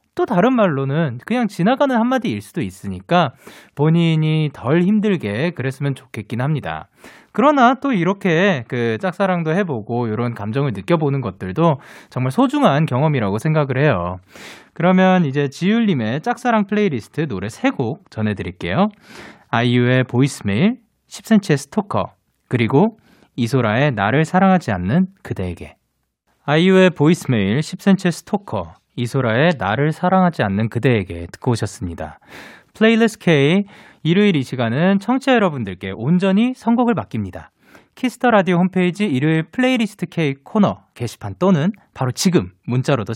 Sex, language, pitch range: male, Korean, 125-200 Hz